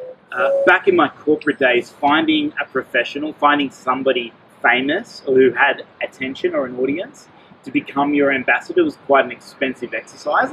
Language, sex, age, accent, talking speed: English, male, 30-49, Australian, 155 wpm